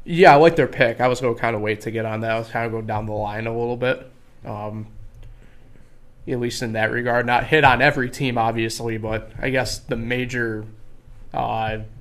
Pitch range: 115-130 Hz